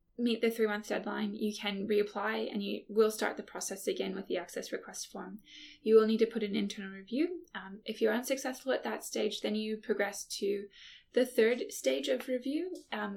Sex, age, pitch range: female, 10-29, 210-235 Hz